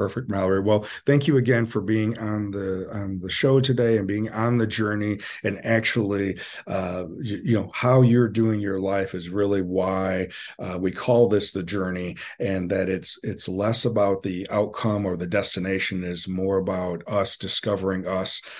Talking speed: 180 wpm